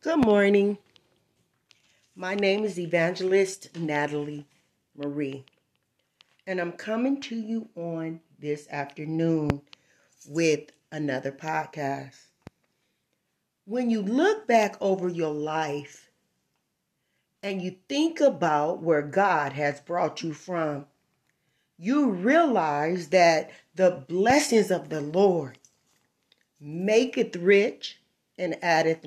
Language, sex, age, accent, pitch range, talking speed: English, female, 40-59, American, 160-235 Hz, 100 wpm